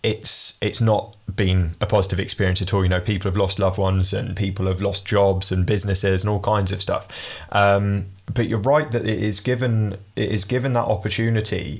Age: 20-39